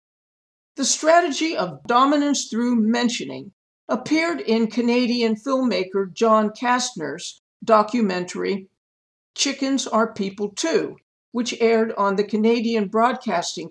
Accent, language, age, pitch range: American, English, 50-69, 195-260 Hz